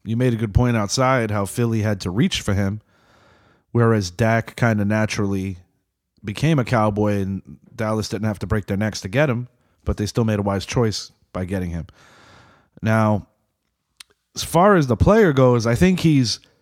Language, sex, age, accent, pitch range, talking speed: English, male, 30-49, American, 110-145 Hz, 190 wpm